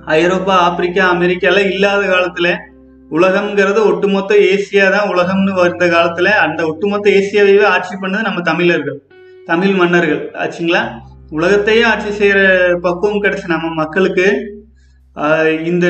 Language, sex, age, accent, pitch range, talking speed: Tamil, male, 30-49, native, 175-205 Hz, 115 wpm